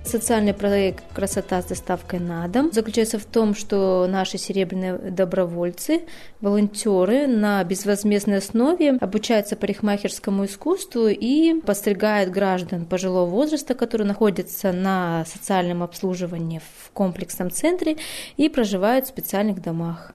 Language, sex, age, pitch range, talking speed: Russian, female, 20-39, 185-225 Hz, 115 wpm